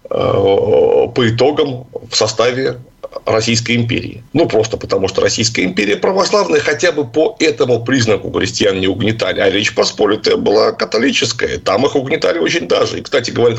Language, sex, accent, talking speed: Russian, male, native, 150 wpm